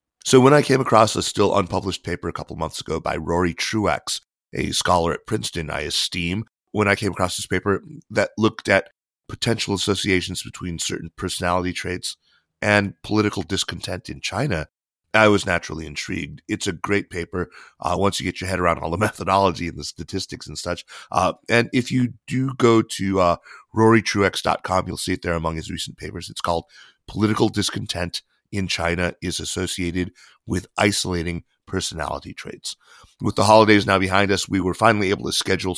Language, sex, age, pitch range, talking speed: English, male, 30-49, 85-105 Hz, 180 wpm